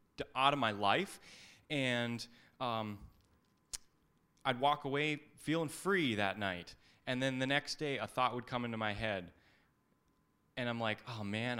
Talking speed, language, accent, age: 155 wpm, English, American, 20-39